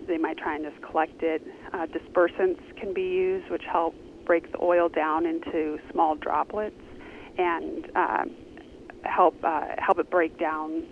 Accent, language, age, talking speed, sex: American, English, 30-49, 160 wpm, female